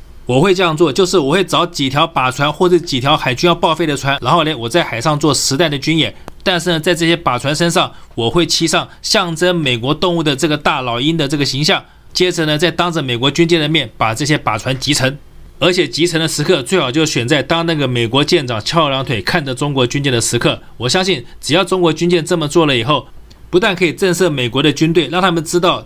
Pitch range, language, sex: 140-175 Hz, Chinese, male